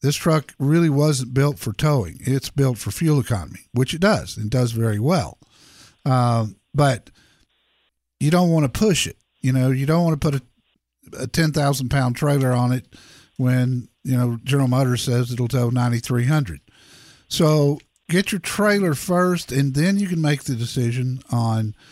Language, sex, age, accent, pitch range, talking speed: English, male, 50-69, American, 125-155 Hz, 180 wpm